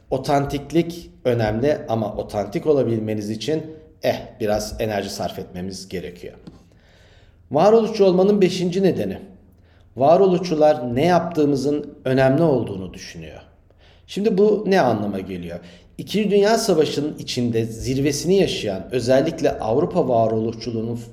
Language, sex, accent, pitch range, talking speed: Turkish, male, native, 110-145 Hz, 100 wpm